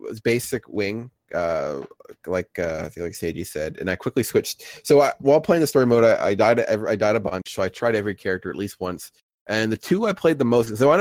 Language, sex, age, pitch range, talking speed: English, male, 20-39, 105-130 Hz, 255 wpm